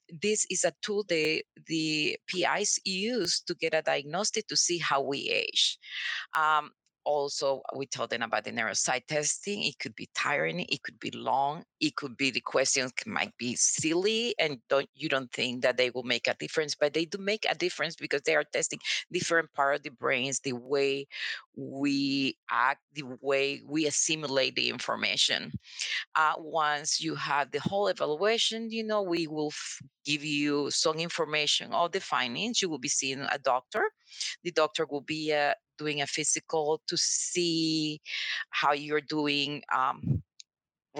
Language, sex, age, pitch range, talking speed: English, female, 40-59, 145-190 Hz, 170 wpm